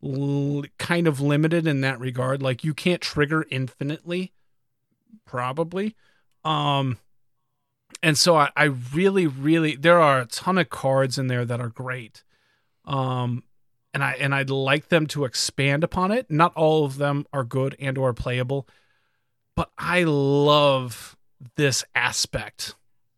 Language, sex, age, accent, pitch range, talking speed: English, male, 30-49, American, 130-155 Hz, 145 wpm